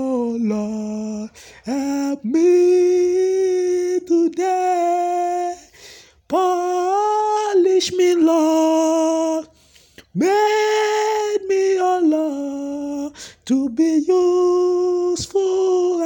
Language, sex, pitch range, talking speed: English, male, 280-360 Hz, 55 wpm